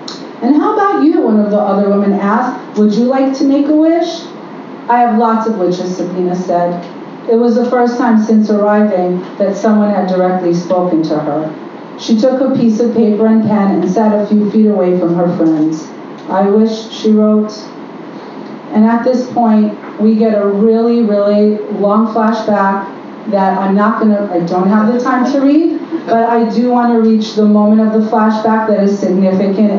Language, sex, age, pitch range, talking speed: English, female, 40-59, 195-235 Hz, 195 wpm